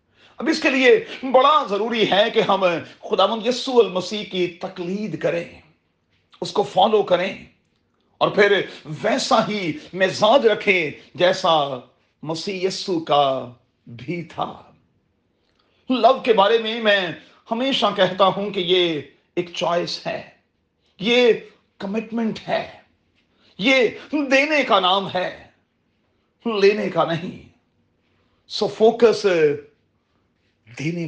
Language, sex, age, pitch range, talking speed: Urdu, male, 40-59, 150-210 Hz, 115 wpm